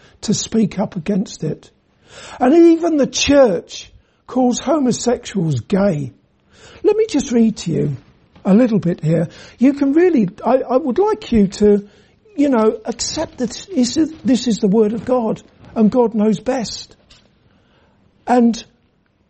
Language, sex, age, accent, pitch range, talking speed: English, male, 60-79, British, 200-260 Hz, 145 wpm